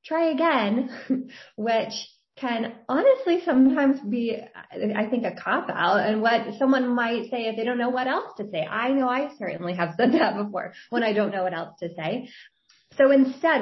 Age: 20-39